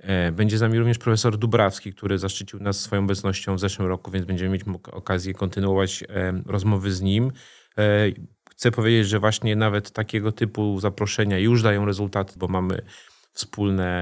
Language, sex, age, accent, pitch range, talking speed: Polish, male, 30-49, native, 100-120 Hz, 155 wpm